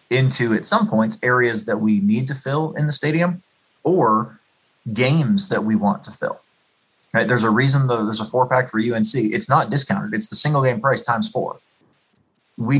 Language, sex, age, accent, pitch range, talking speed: English, male, 20-39, American, 110-140 Hz, 195 wpm